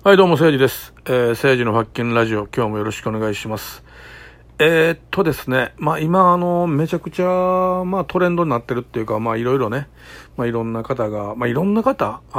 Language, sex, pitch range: Japanese, male, 115-170 Hz